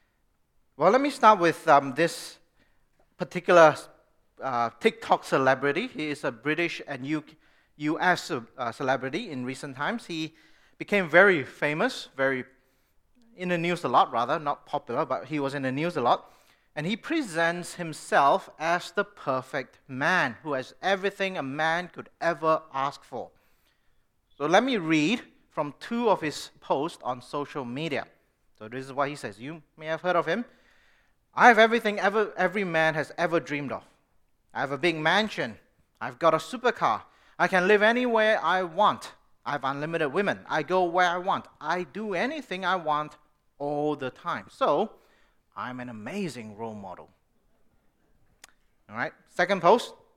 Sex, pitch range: male, 140-200 Hz